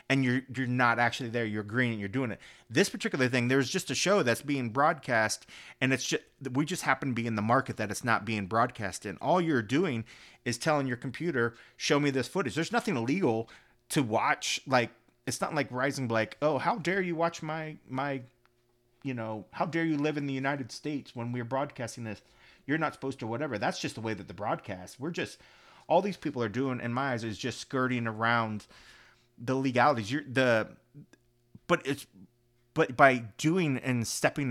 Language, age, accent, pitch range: English, 40-59, American, 115-140 Hz